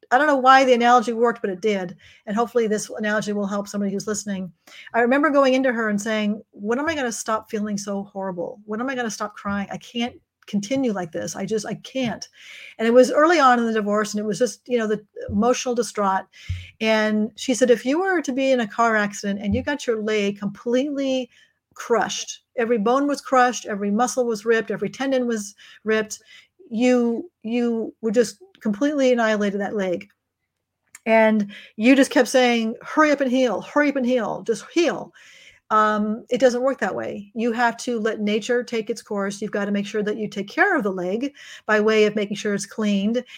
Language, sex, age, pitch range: English, female, 40-59, 210-250 Hz